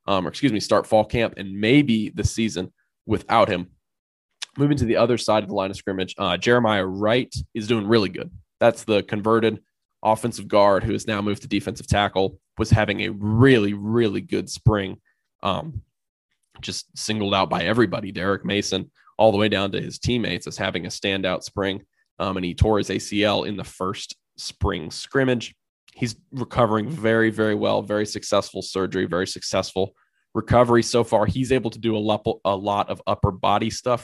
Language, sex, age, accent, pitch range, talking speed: English, male, 20-39, American, 100-115 Hz, 185 wpm